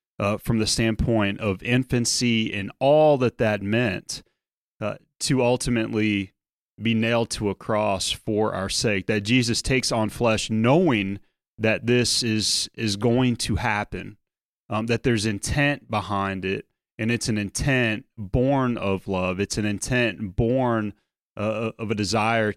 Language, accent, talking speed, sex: English, American, 150 wpm, male